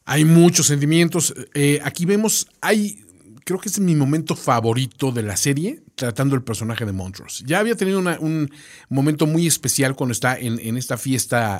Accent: Mexican